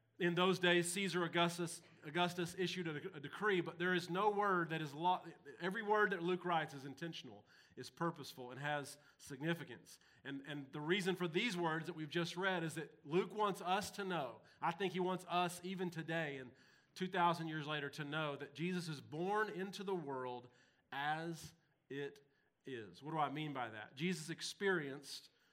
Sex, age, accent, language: male, 40-59, American, English